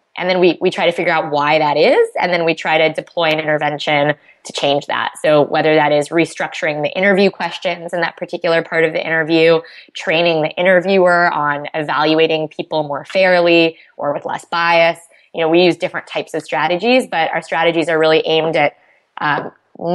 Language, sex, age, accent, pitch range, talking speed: English, female, 20-39, American, 155-180 Hz, 195 wpm